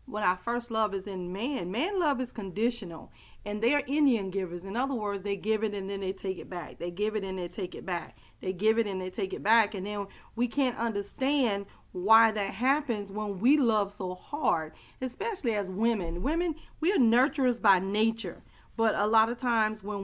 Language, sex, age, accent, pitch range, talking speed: English, female, 40-59, American, 200-260 Hz, 215 wpm